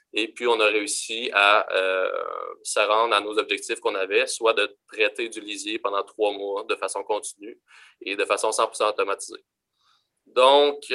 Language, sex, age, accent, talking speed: French, male, 20-39, Canadian, 170 wpm